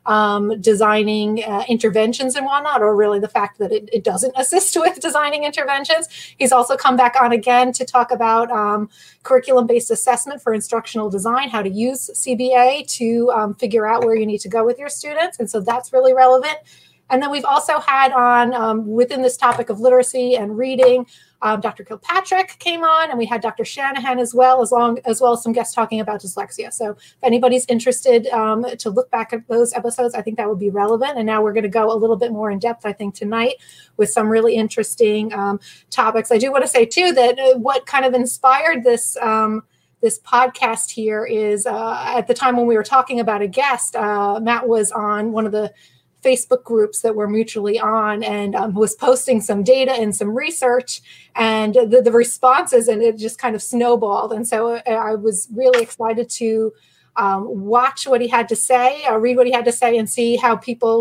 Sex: female